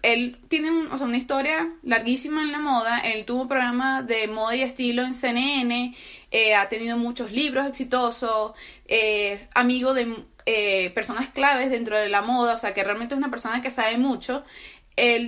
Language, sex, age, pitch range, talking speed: Spanish, female, 20-39, 235-290 Hz, 195 wpm